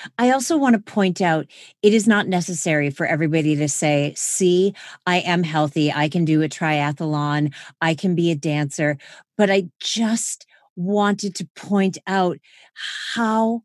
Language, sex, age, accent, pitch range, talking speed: English, female, 40-59, American, 150-195 Hz, 160 wpm